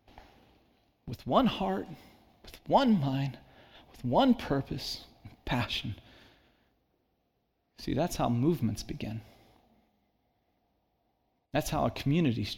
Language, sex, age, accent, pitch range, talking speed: English, male, 30-49, American, 120-180 Hz, 90 wpm